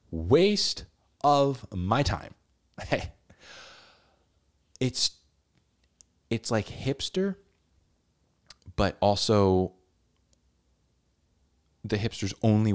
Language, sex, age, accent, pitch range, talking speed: English, male, 20-39, American, 80-105 Hz, 60 wpm